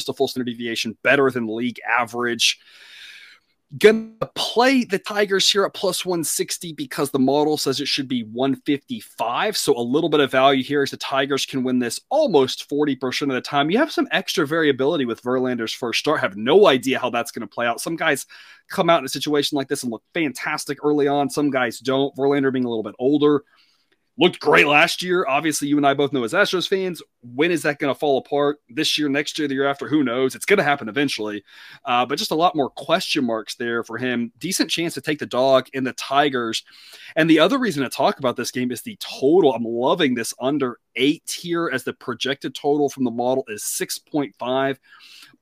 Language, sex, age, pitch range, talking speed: English, male, 30-49, 130-155 Hz, 220 wpm